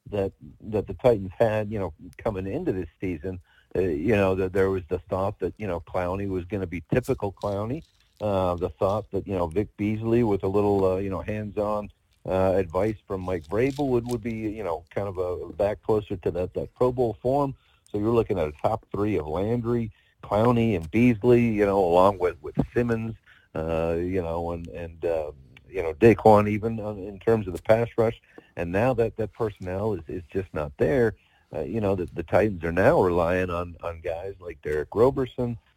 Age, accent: 50-69, American